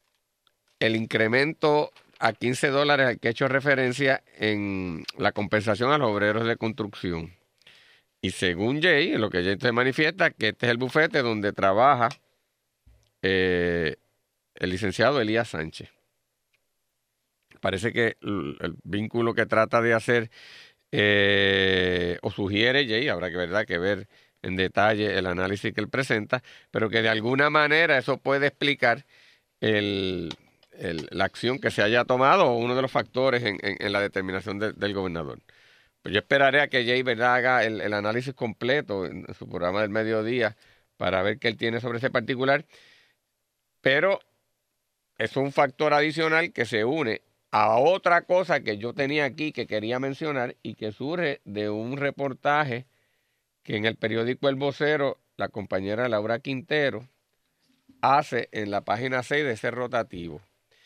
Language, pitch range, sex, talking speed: Spanish, 105-135 Hz, male, 155 wpm